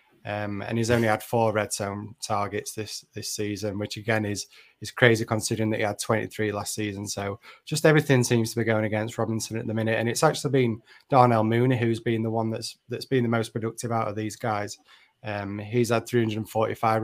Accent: British